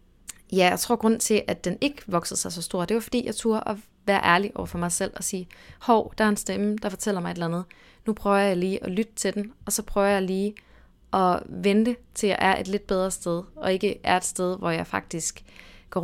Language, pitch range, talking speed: English, 180-210 Hz, 255 wpm